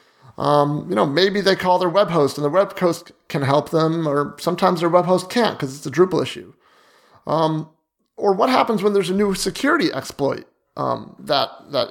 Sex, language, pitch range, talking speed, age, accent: male, English, 140-185 Hz, 200 wpm, 30-49, American